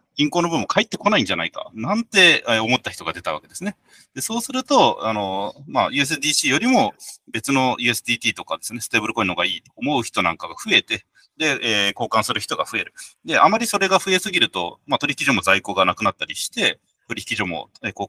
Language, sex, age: Japanese, male, 30-49